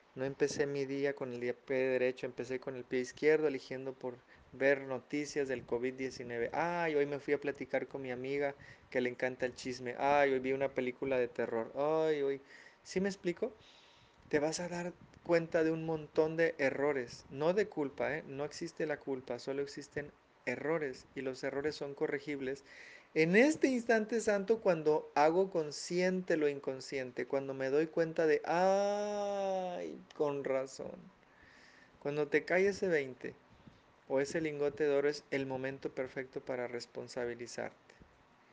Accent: Mexican